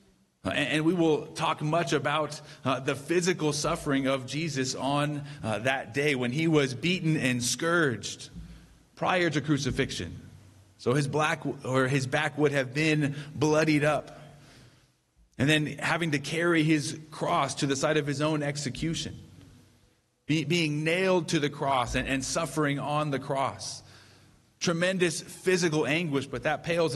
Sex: male